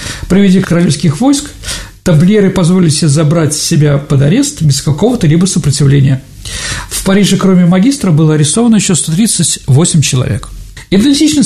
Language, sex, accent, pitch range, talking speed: Russian, male, native, 145-215 Hz, 130 wpm